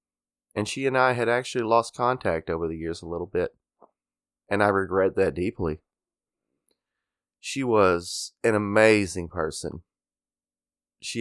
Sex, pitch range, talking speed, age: male, 95-120 Hz, 135 wpm, 20-39